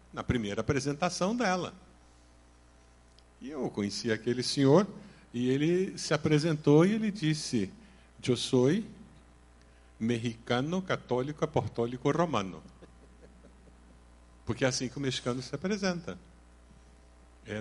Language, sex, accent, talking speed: Portuguese, male, Brazilian, 105 wpm